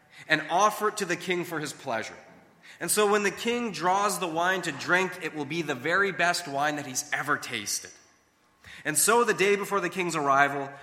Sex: male